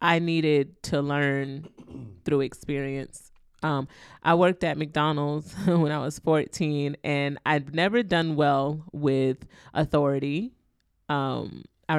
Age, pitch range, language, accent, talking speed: 20-39, 145-185 Hz, English, American, 120 wpm